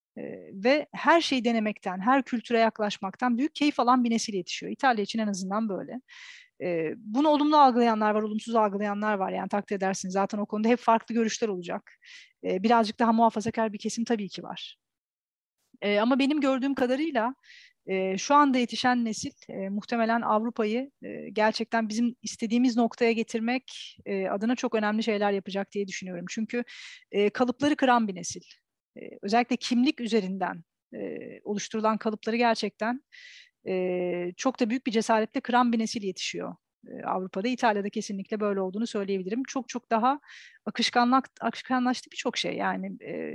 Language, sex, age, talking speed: Turkish, female, 40-59, 145 wpm